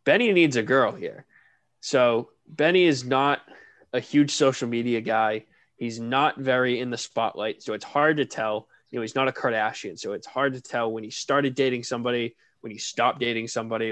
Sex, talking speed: male, 200 wpm